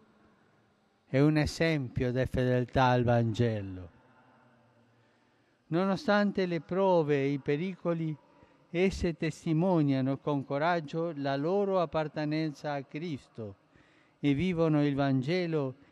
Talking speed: 100 wpm